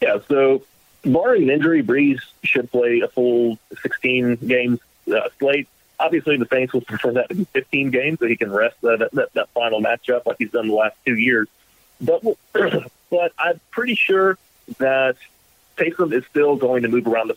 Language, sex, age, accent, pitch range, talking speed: English, male, 30-49, American, 110-140 Hz, 185 wpm